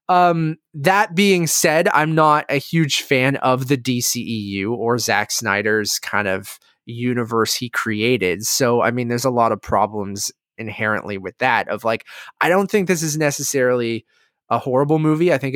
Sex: male